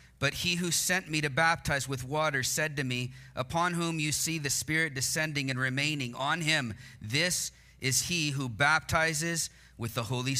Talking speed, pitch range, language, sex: 180 wpm, 125-155 Hz, English, male